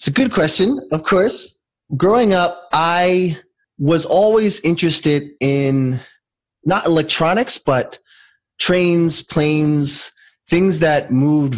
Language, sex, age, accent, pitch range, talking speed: English, male, 20-39, American, 115-145 Hz, 110 wpm